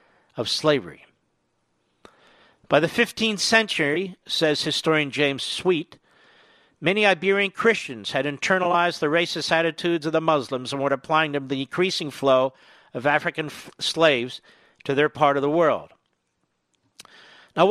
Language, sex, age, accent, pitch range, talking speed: English, male, 50-69, American, 150-200 Hz, 135 wpm